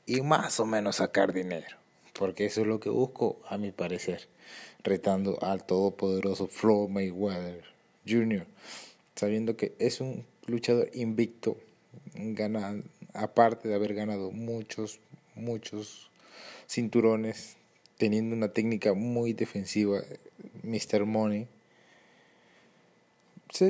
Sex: male